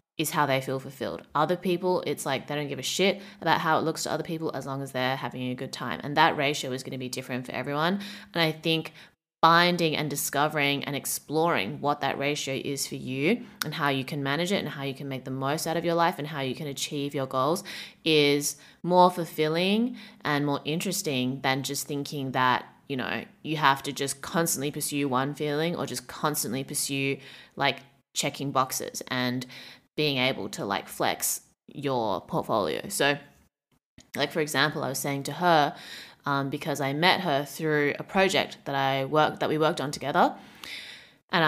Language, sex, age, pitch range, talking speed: English, female, 20-39, 135-160 Hz, 200 wpm